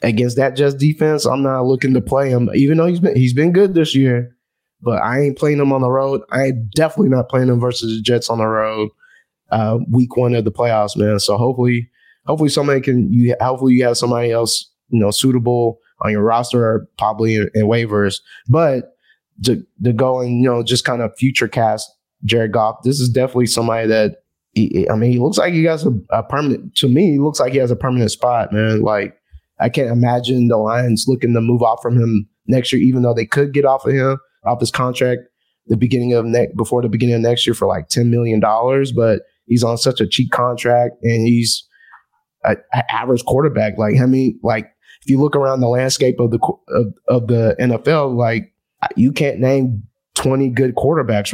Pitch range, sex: 115-130 Hz, male